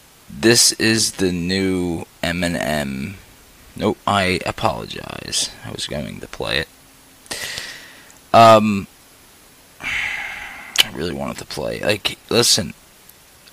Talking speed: 100 wpm